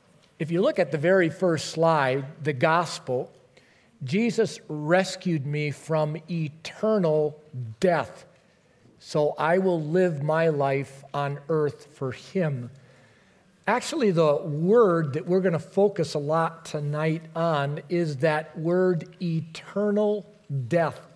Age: 50-69